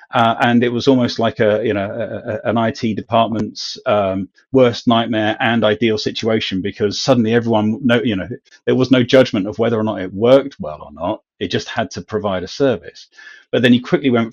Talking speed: 215 wpm